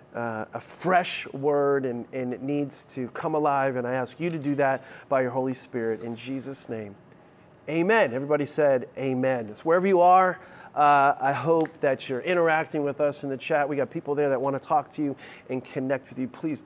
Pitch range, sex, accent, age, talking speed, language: 135-160 Hz, male, American, 30-49, 210 wpm, English